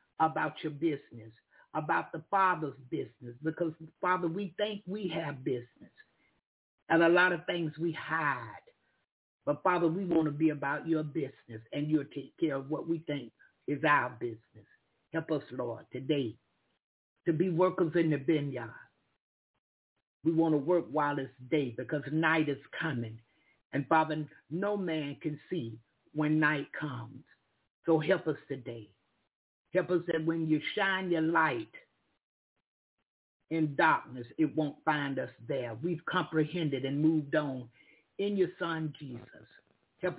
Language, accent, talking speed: English, American, 150 wpm